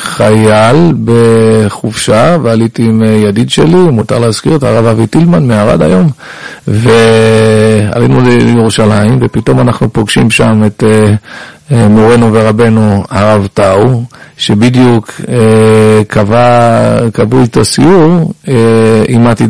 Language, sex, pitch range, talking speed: Hebrew, male, 110-125 Hz, 100 wpm